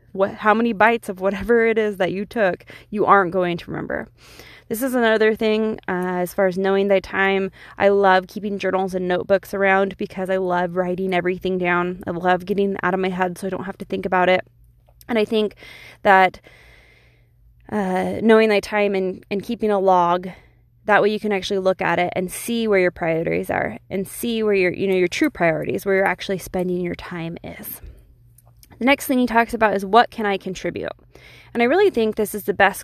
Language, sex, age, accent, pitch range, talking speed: English, female, 20-39, American, 180-205 Hz, 215 wpm